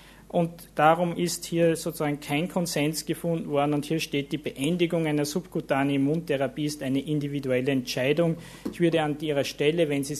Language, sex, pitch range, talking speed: German, male, 140-165 Hz, 165 wpm